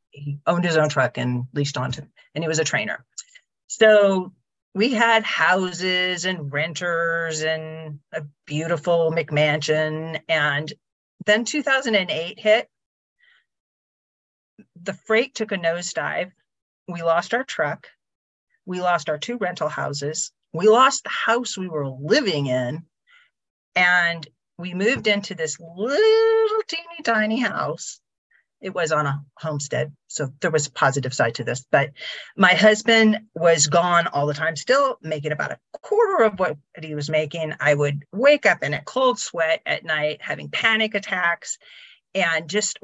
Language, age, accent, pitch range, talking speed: English, 40-59, American, 155-215 Hz, 145 wpm